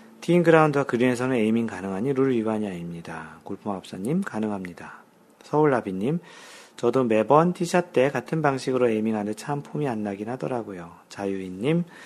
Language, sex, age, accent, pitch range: Korean, male, 40-59, native, 110-145 Hz